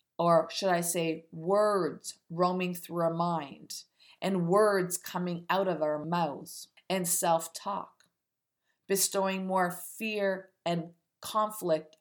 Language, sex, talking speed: English, female, 115 wpm